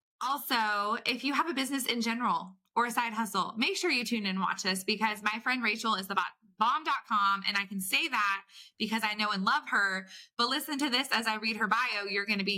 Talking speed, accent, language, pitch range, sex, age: 245 wpm, American, English, 205-260 Hz, female, 20-39